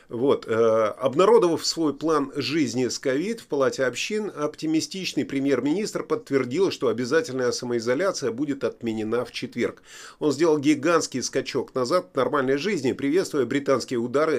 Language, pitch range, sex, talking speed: Russian, 120-150 Hz, male, 135 wpm